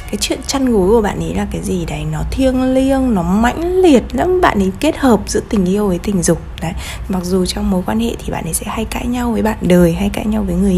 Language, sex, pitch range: Vietnamese, female, 170-230 Hz